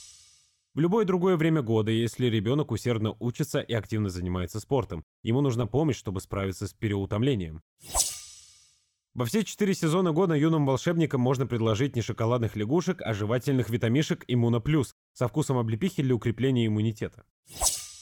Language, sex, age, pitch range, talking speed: Russian, male, 20-39, 110-145 Hz, 140 wpm